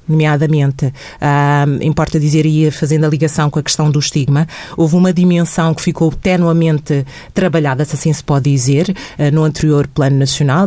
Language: Portuguese